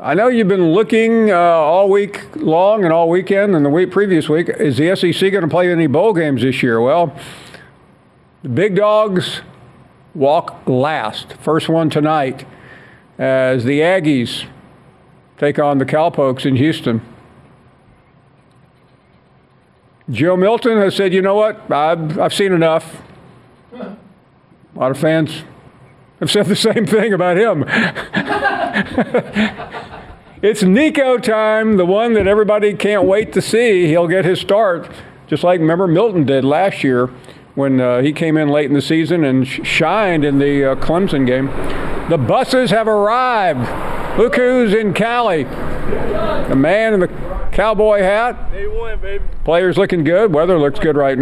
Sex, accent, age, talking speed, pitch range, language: male, American, 50-69, 150 wpm, 140-205 Hz, English